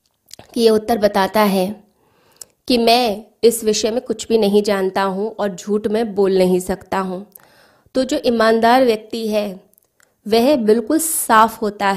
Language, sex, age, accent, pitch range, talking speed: Hindi, female, 20-39, native, 200-230 Hz, 150 wpm